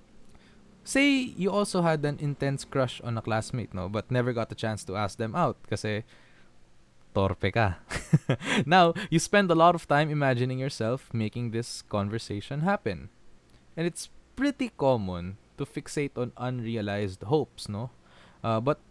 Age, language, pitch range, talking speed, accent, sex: 20-39, Filipino, 110-175 Hz, 150 wpm, native, male